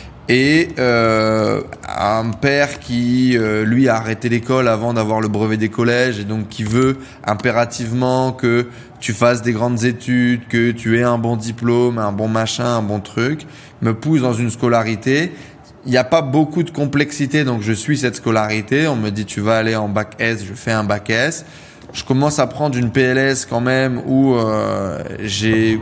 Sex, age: male, 20-39